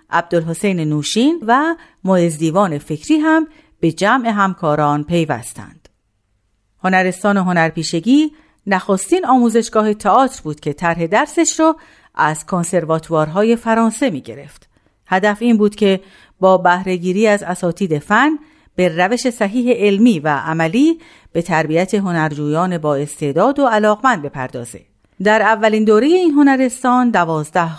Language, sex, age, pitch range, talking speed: Persian, female, 50-69, 165-245 Hz, 120 wpm